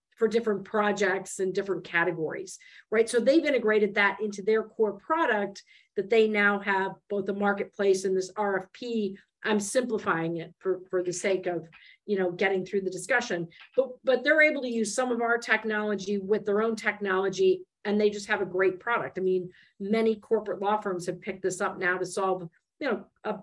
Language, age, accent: English, 50-69, American